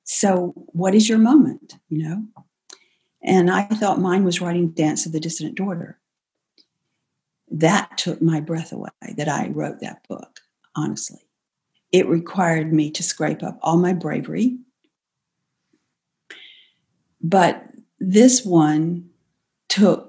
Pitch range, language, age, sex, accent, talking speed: 160-195 Hz, English, 50-69, female, American, 125 wpm